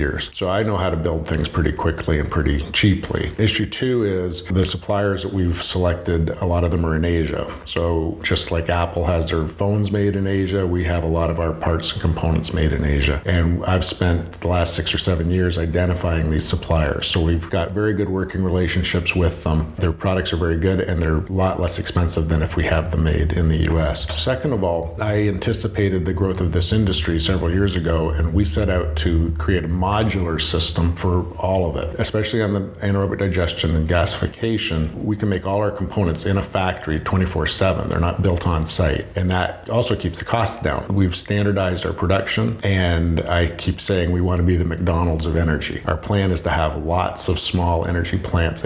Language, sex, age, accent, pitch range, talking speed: English, male, 50-69, American, 85-95 Hz, 210 wpm